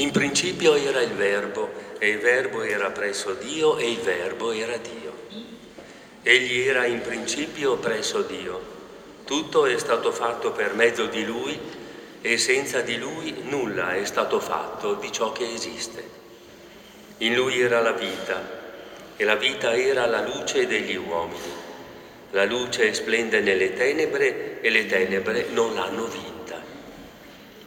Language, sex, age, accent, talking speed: Italian, male, 50-69, native, 145 wpm